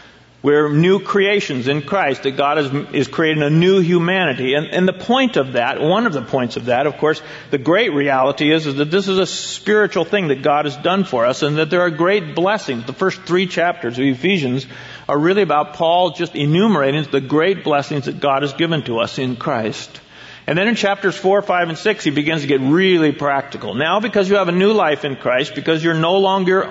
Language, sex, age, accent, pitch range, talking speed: English, male, 50-69, American, 145-185 Hz, 225 wpm